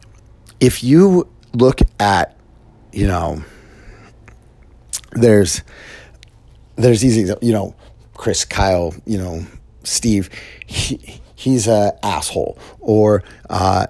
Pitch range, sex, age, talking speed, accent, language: 95-120 Hz, male, 30-49, 95 wpm, American, English